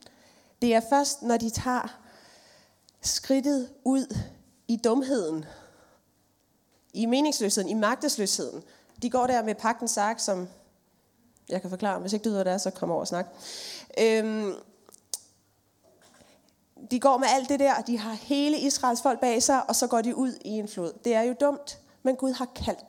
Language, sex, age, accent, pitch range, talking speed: Danish, female, 30-49, native, 205-265 Hz, 165 wpm